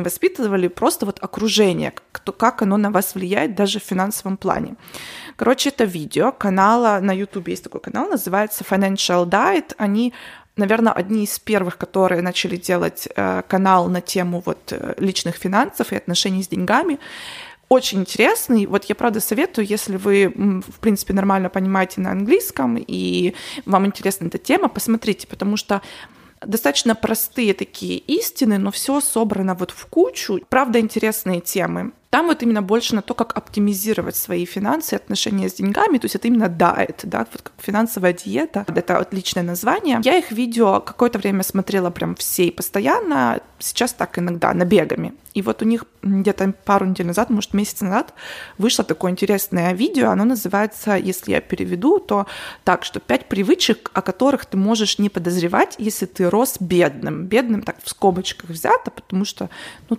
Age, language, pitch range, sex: 20-39, Russian, 185-230 Hz, female